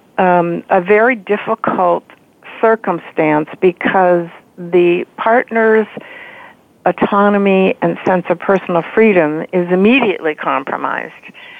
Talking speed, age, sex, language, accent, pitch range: 90 wpm, 60-79, female, English, American, 175-220 Hz